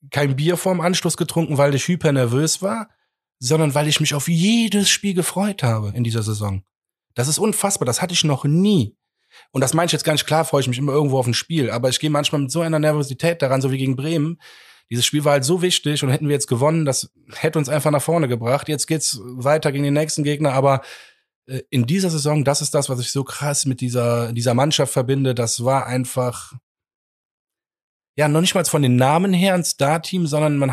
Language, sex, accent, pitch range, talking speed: German, male, German, 125-160 Hz, 225 wpm